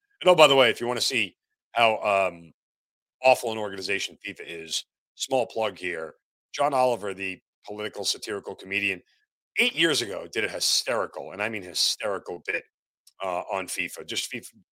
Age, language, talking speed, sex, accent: 40-59, English, 170 wpm, male, American